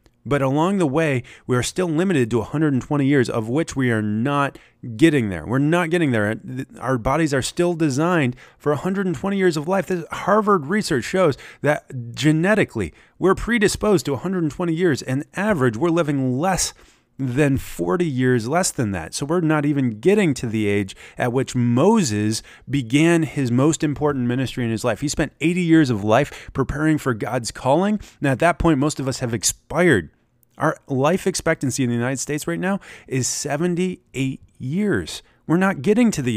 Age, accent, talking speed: 30-49, American, 180 wpm